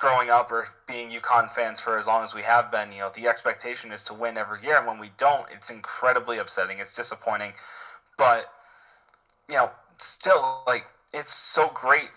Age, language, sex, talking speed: 20-39, English, male, 190 wpm